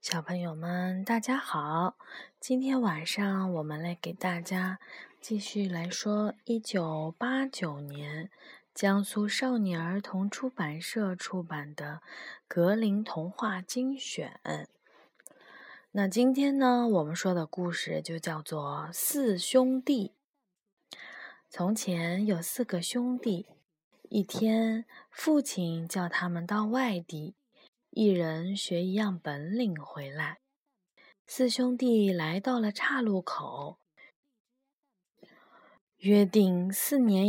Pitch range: 175-250 Hz